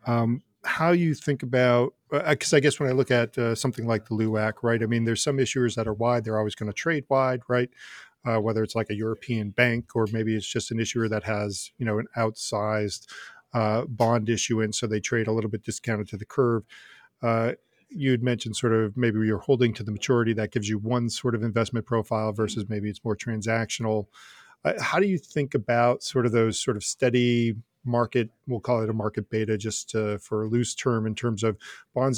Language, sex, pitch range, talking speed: English, male, 110-125 Hz, 220 wpm